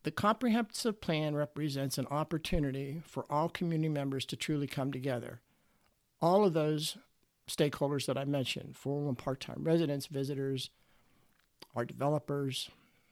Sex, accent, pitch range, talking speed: male, American, 135-160 Hz, 130 wpm